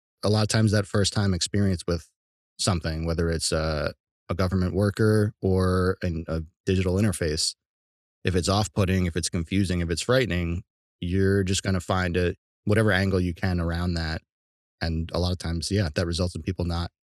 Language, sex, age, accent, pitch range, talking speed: English, male, 20-39, American, 90-110 Hz, 185 wpm